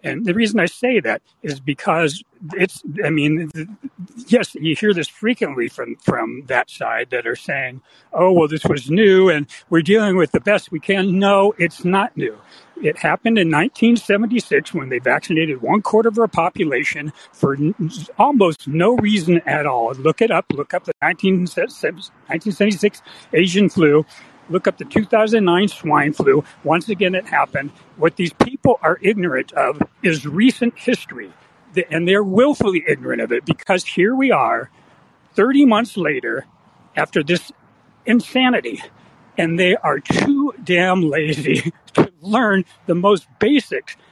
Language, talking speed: English, 155 wpm